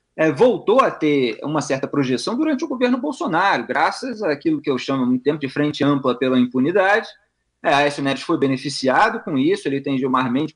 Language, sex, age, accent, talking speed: Portuguese, male, 20-39, Brazilian, 190 wpm